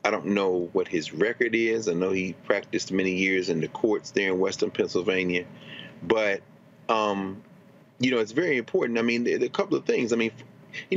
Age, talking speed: 40-59, 210 wpm